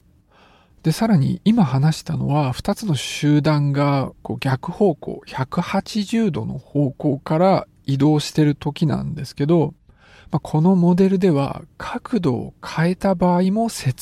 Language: Japanese